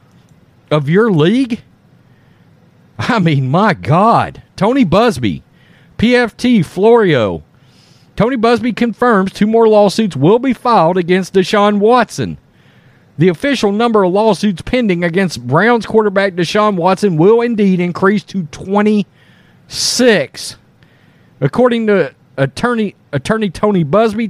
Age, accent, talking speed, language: 40-59, American, 110 wpm, English